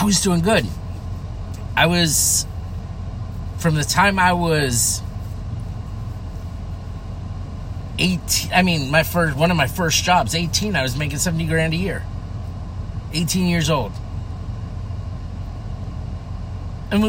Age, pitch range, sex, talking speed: 30-49, 95-140 Hz, male, 115 wpm